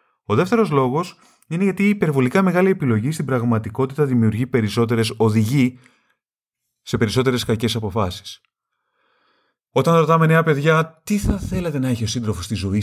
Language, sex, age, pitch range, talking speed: Greek, male, 30-49, 110-145 Hz, 135 wpm